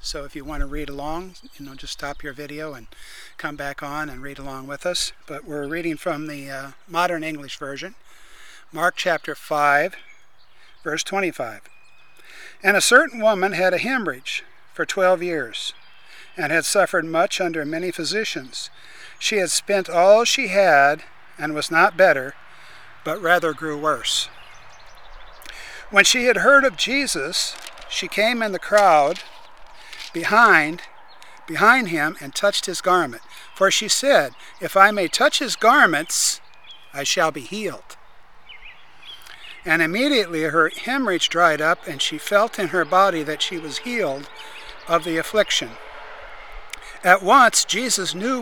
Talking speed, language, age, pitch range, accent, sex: 150 wpm, English, 50-69, 150-210 Hz, American, male